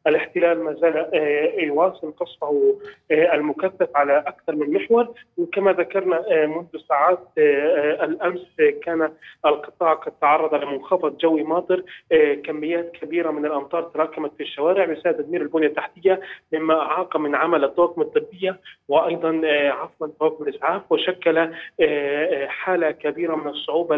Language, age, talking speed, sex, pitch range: Arabic, 30-49, 120 wpm, male, 145-180 Hz